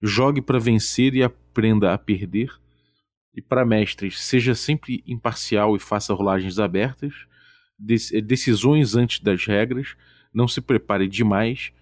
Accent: Brazilian